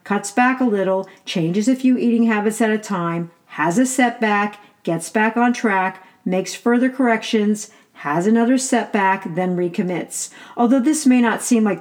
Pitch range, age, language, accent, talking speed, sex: 185-240 Hz, 50-69, English, American, 170 wpm, female